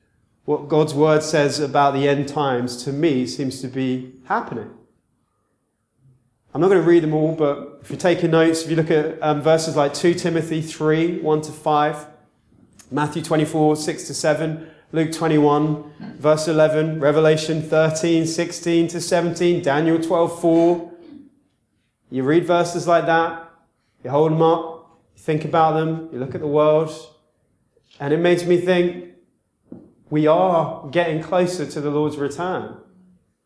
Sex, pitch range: male, 150-175 Hz